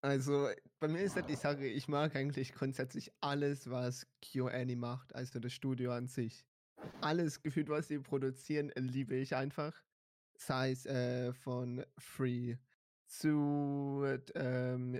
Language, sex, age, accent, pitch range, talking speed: German, male, 20-39, German, 125-145 Hz, 140 wpm